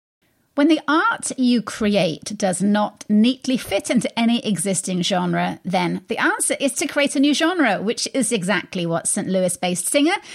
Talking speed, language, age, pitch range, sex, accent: 175 wpm, English, 30-49, 190-285 Hz, female, British